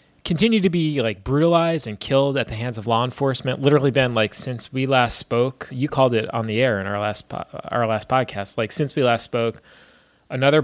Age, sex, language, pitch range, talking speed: 20-39, male, English, 110-135 Hz, 220 wpm